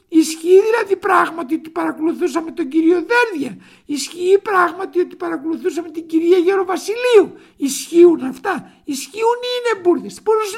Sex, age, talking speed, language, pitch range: male, 60-79, 125 wpm, Greek, 330-465 Hz